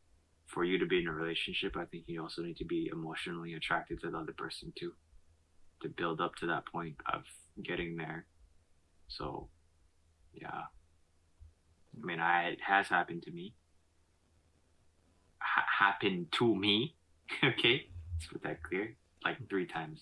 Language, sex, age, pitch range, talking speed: English, male, 20-39, 80-85 Hz, 155 wpm